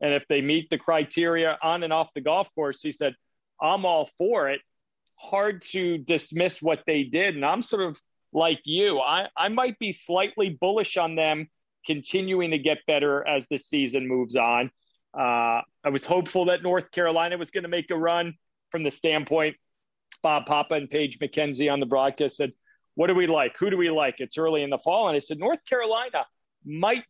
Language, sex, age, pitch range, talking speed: English, male, 40-59, 140-175 Hz, 200 wpm